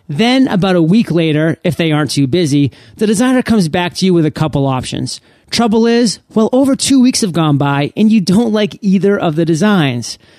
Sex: male